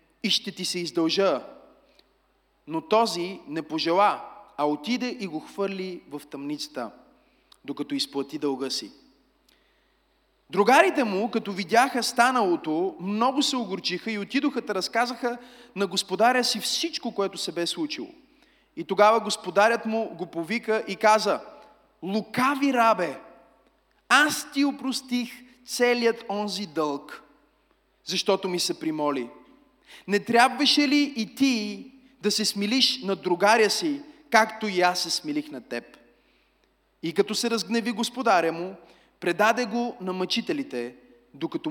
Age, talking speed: 30-49, 130 wpm